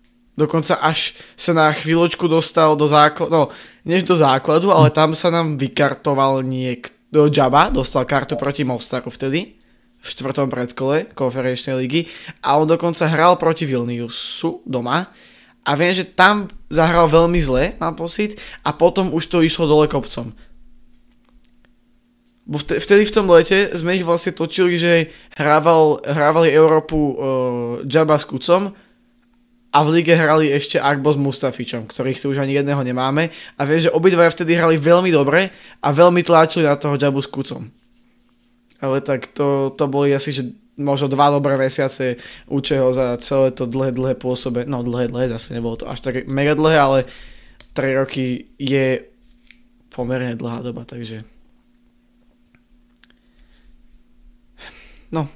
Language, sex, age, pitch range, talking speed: Slovak, male, 20-39, 135-175 Hz, 145 wpm